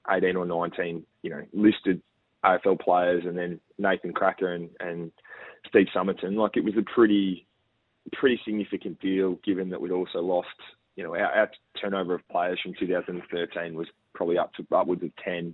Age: 20-39